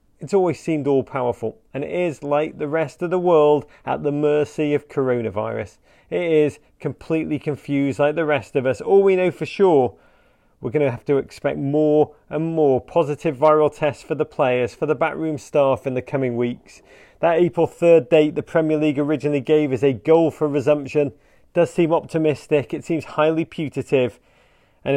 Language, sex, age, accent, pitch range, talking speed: English, male, 30-49, British, 135-165 Hz, 185 wpm